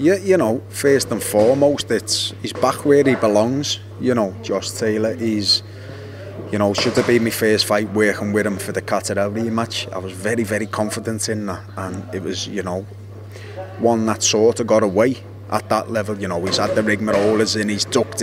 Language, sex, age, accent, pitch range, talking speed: English, male, 30-49, British, 100-115 Hz, 205 wpm